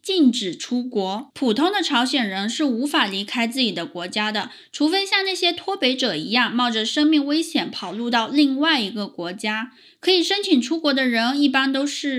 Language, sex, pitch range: Chinese, female, 220-300 Hz